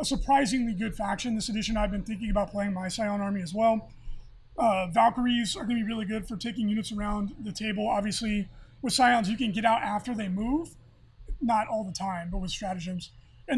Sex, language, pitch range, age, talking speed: male, English, 200-235 Hz, 20-39, 210 wpm